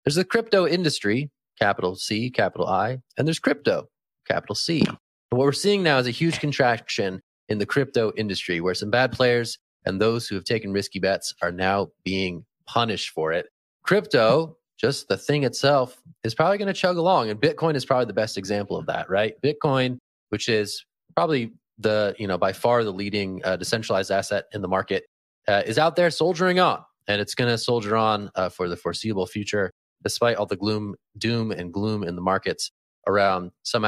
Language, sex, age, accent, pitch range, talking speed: English, male, 30-49, American, 95-130 Hz, 195 wpm